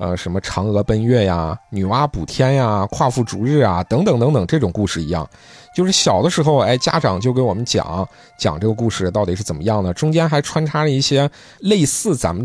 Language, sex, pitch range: Chinese, male, 95-145 Hz